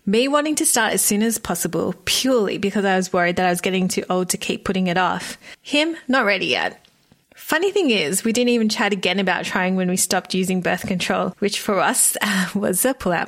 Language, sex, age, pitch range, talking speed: English, female, 20-39, 185-225 Hz, 225 wpm